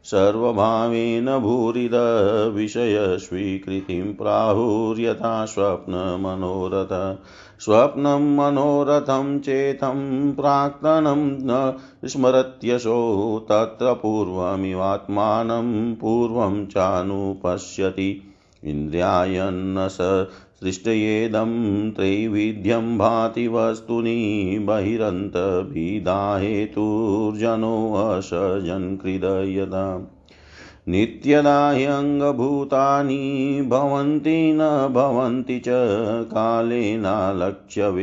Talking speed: 35 wpm